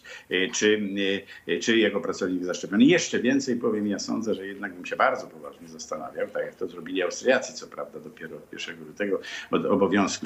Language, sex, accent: Polish, male, native